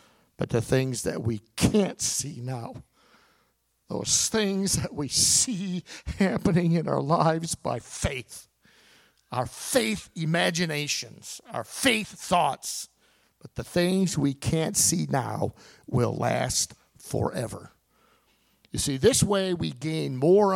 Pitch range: 125-175 Hz